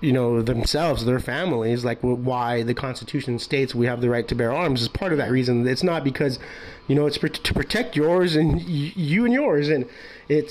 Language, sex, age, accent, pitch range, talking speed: English, male, 30-49, American, 135-175 Hz, 225 wpm